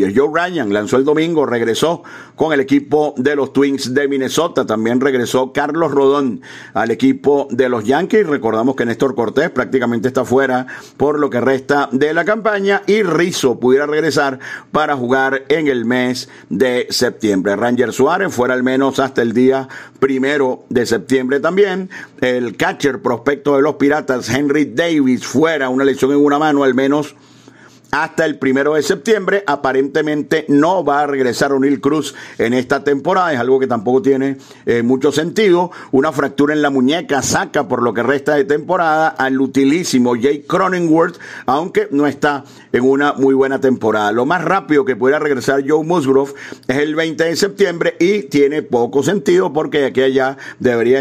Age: 50-69